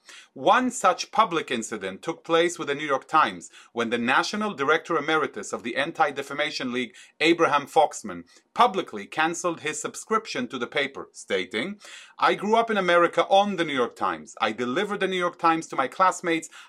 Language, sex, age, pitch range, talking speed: English, male, 30-49, 150-205 Hz, 175 wpm